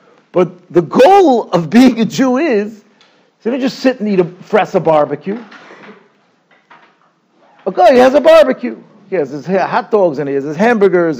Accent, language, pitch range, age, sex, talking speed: American, English, 185-255 Hz, 50-69, male, 180 wpm